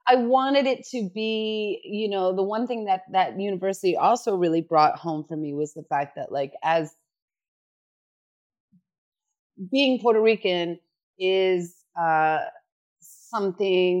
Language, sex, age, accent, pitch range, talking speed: English, female, 30-49, American, 155-210 Hz, 135 wpm